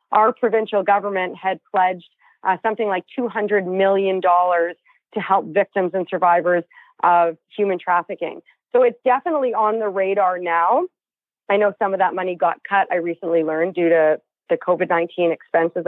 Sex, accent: female, American